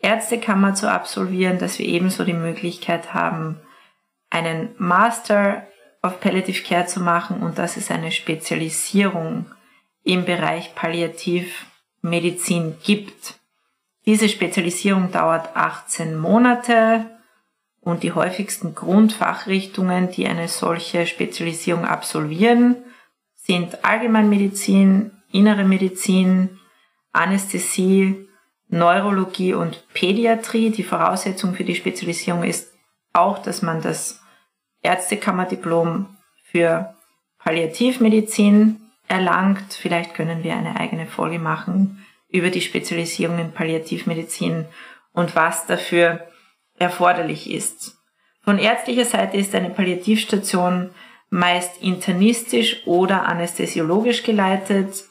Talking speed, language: 95 wpm, German